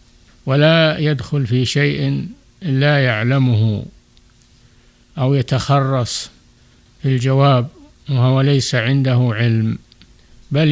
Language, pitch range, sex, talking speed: Arabic, 125-145 Hz, male, 85 wpm